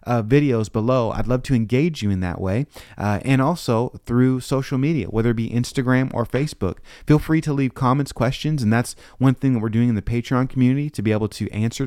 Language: English